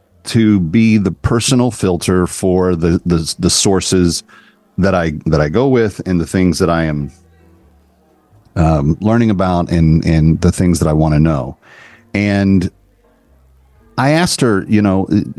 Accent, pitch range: American, 80-110 Hz